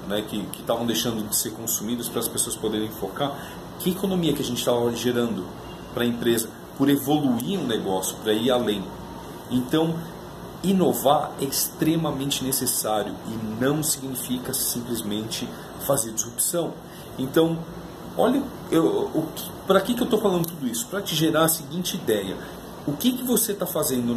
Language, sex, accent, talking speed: Portuguese, male, Brazilian, 155 wpm